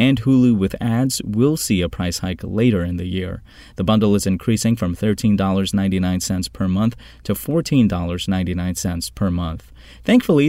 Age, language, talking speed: 30-49, English, 150 wpm